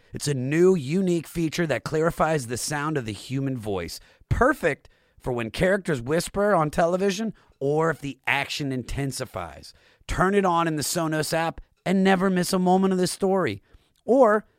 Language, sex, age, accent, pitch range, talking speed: English, male, 30-49, American, 115-165 Hz, 170 wpm